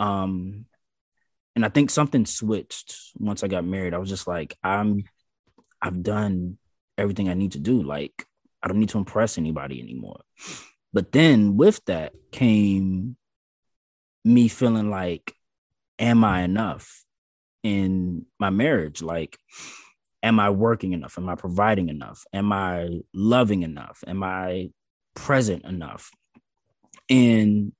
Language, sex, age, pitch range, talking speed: English, male, 20-39, 95-115 Hz, 135 wpm